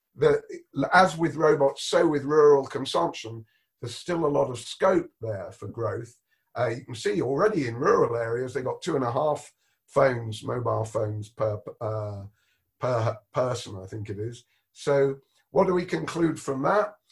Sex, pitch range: male, 115-150 Hz